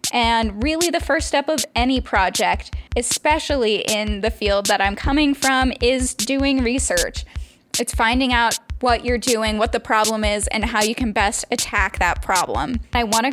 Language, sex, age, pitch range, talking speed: English, female, 10-29, 210-265 Hz, 175 wpm